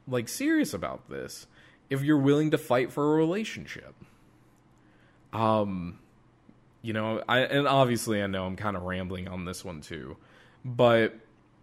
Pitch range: 110-145 Hz